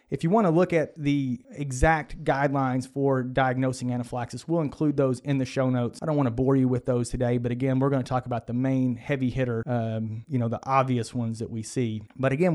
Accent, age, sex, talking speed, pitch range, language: American, 30-49, male, 240 wpm, 125-150 Hz, English